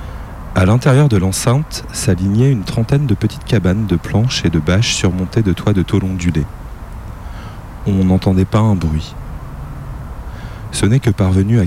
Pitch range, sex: 85-115 Hz, male